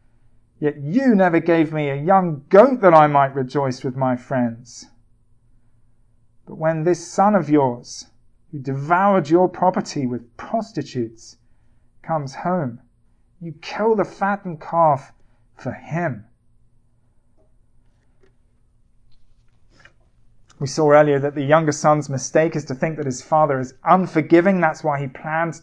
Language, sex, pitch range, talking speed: English, male, 125-190 Hz, 130 wpm